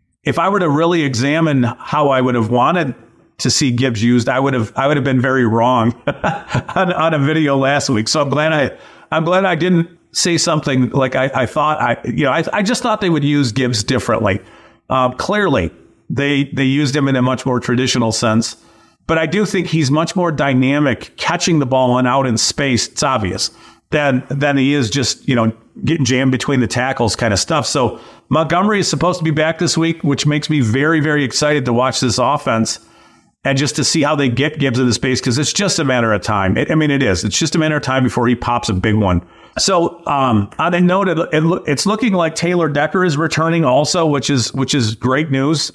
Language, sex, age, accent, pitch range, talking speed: English, male, 40-59, American, 120-160 Hz, 230 wpm